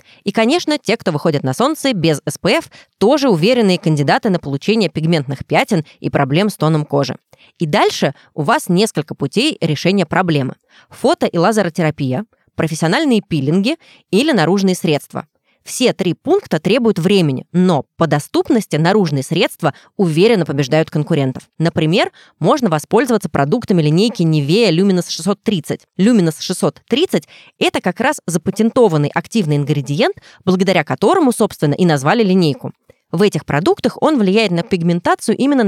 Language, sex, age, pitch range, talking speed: Russian, female, 20-39, 160-225 Hz, 135 wpm